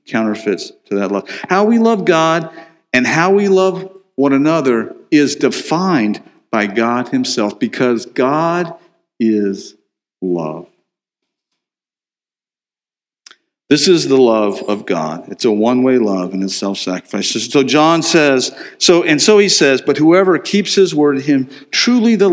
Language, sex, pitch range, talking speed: English, male, 125-190 Hz, 140 wpm